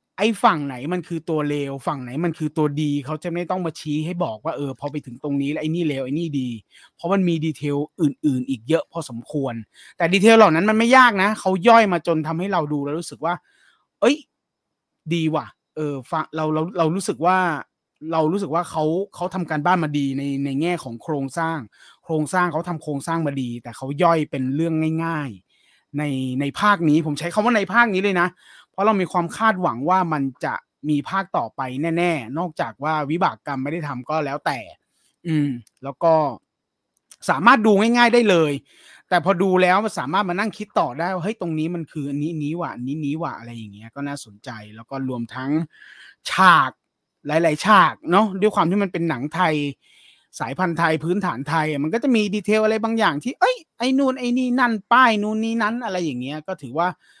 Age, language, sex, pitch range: 30-49, English, male, 145-185 Hz